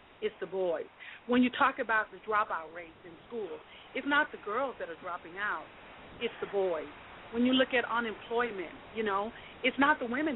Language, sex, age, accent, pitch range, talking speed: English, female, 40-59, American, 200-250 Hz, 195 wpm